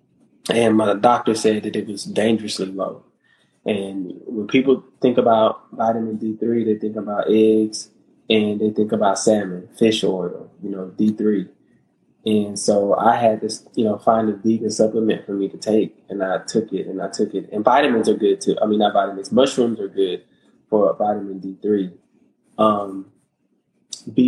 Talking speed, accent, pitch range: 180 wpm, American, 105-120 Hz